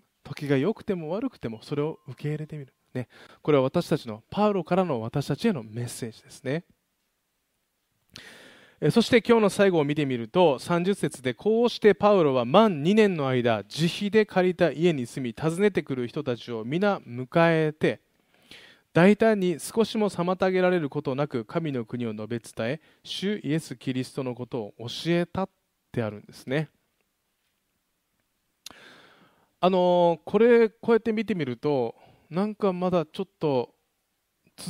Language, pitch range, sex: Japanese, 130-195 Hz, male